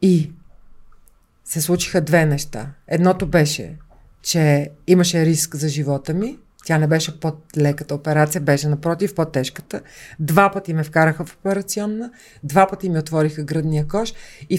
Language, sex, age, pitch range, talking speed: Bulgarian, female, 40-59, 155-195 Hz, 150 wpm